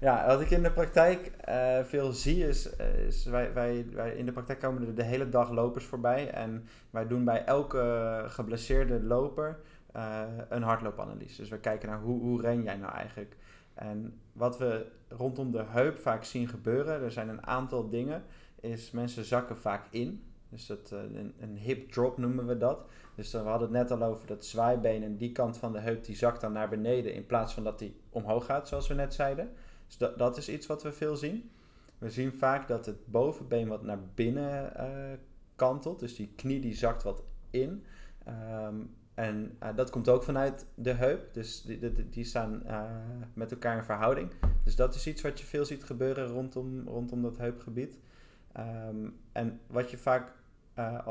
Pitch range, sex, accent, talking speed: 110-130 Hz, male, Dutch, 195 wpm